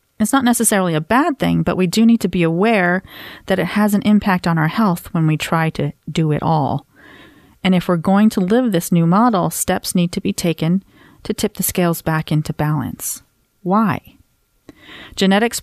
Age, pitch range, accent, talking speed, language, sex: 40-59, 160-200 Hz, American, 195 wpm, English, female